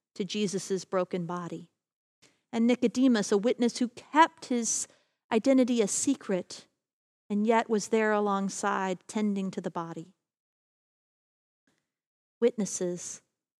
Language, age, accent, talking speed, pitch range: English, 40-59, American, 105 wpm, 200-250 Hz